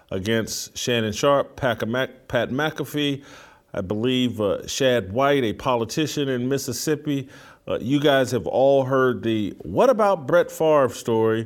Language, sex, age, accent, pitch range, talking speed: English, male, 40-59, American, 120-145 Hz, 135 wpm